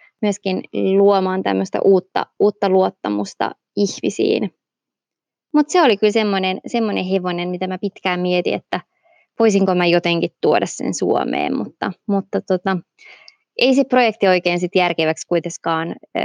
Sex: female